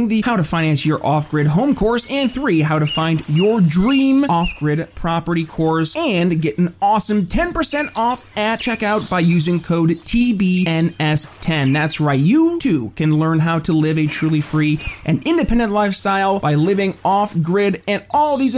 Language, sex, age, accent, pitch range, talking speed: English, male, 20-39, American, 155-220 Hz, 165 wpm